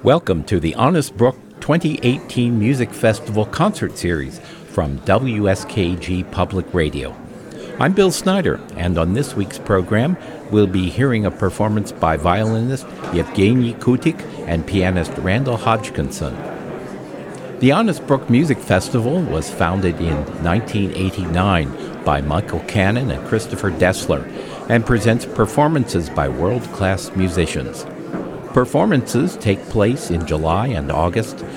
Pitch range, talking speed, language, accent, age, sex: 85-115 Hz, 120 wpm, English, American, 60-79, male